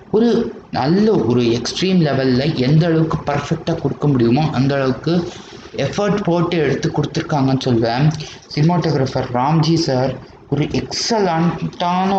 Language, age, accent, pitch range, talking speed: Tamil, 20-39, native, 130-165 Hz, 110 wpm